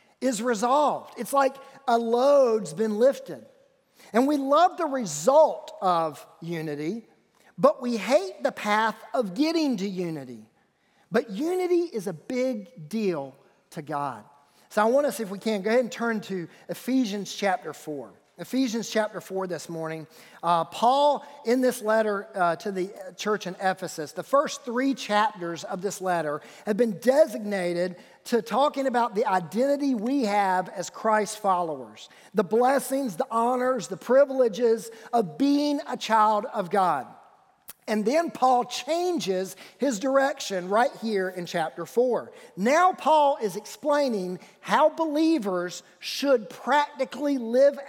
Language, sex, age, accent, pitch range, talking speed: English, male, 40-59, American, 175-255 Hz, 145 wpm